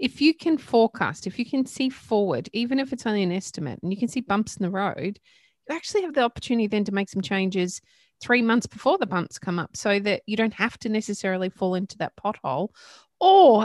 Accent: Australian